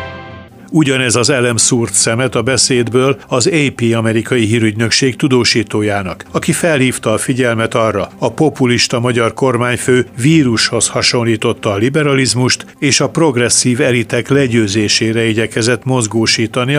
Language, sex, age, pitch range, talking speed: Hungarian, male, 60-79, 115-135 Hz, 110 wpm